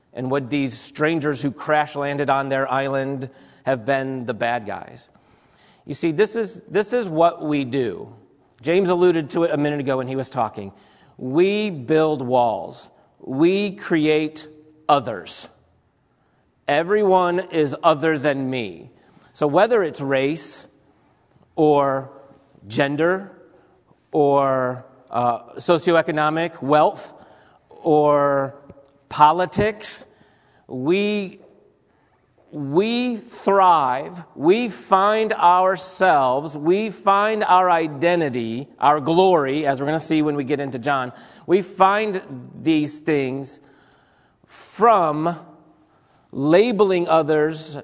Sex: male